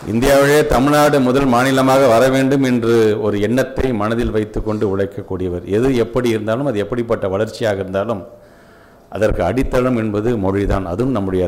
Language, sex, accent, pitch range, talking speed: Tamil, male, native, 100-140 Hz, 130 wpm